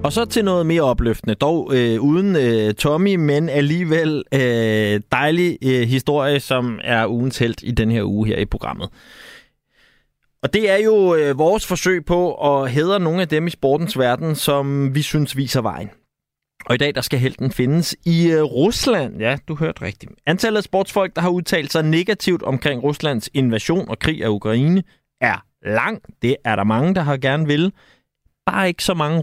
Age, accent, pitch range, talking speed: 30-49, native, 115-160 Hz, 190 wpm